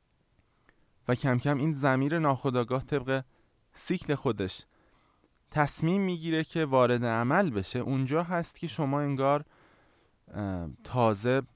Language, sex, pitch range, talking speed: Persian, male, 110-140 Hz, 110 wpm